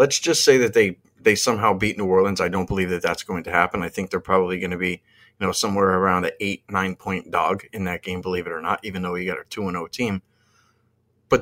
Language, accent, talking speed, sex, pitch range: English, American, 270 wpm, male, 100-125 Hz